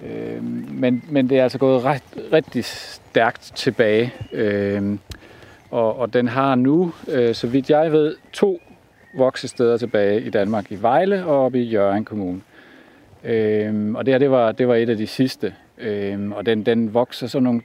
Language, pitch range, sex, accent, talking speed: Danish, 105-130 Hz, male, native, 180 wpm